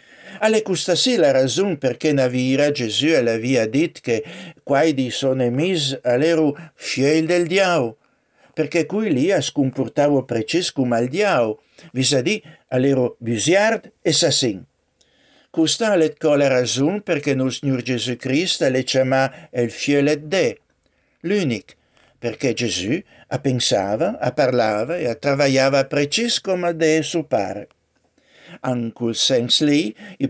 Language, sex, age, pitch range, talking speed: Italian, male, 60-79, 125-165 Hz, 125 wpm